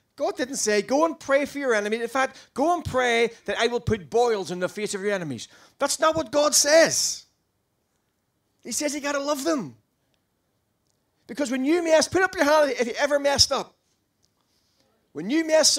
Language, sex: English, male